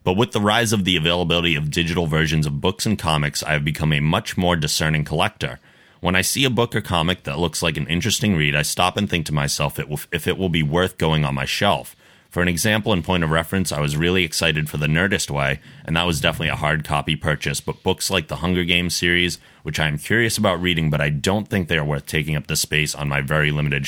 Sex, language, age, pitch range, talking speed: male, English, 30-49, 75-90 Hz, 255 wpm